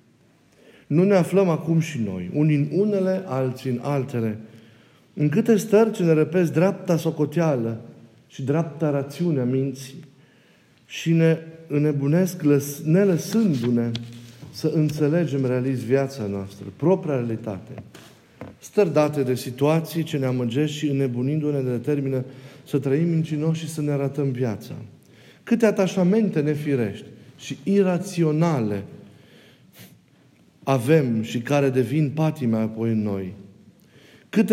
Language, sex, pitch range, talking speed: Romanian, male, 130-165 Hz, 115 wpm